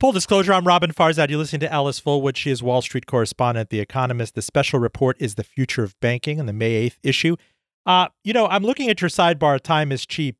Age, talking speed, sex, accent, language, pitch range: 40-59, 235 wpm, male, American, English, 135-190 Hz